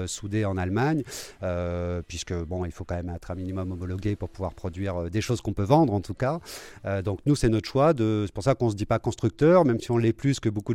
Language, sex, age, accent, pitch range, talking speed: French, male, 30-49, French, 90-110 Hz, 275 wpm